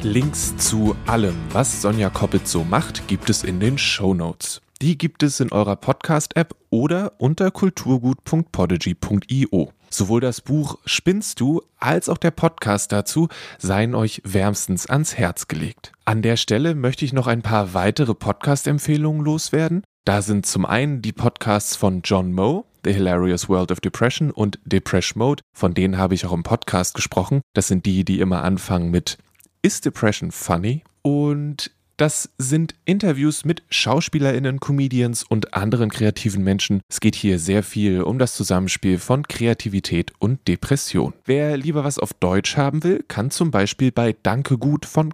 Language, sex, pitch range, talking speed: German, male, 95-145 Hz, 160 wpm